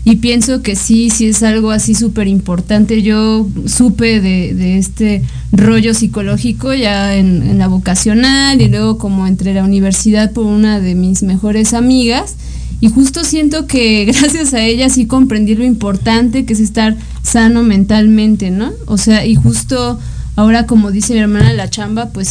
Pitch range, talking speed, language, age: 205-240 Hz, 170 wpm, Spanish, 20-39